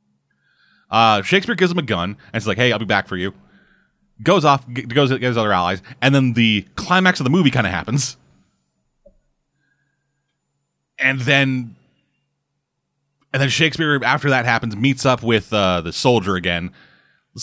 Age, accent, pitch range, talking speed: 30-49, American, 105-140 Hz, 165 wpm